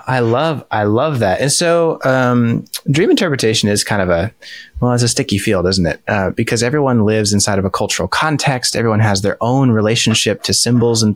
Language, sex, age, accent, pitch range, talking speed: English, male, 20-39, American, 100-130 Hz, 205 wpm